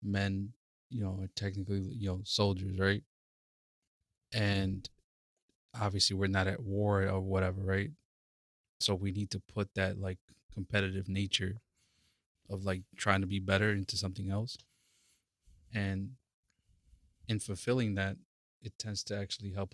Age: 20-39